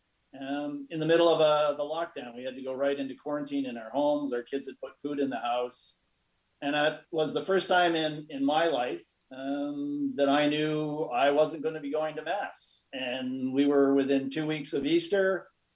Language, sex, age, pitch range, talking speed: English, male, 50-69, 135-155 Hz, 215 wpm